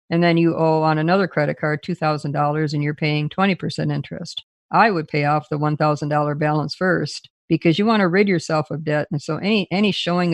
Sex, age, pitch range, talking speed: female, 50-69, 155-175 Hz, 205 wpm